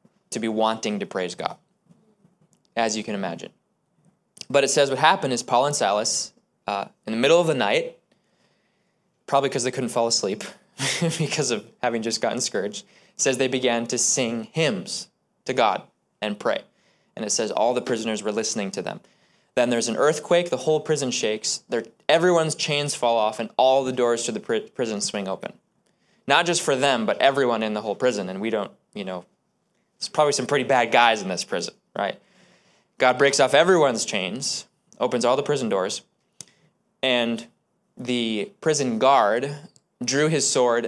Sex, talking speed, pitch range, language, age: male, 175 wpm, 115-145 Hz, English, 20-39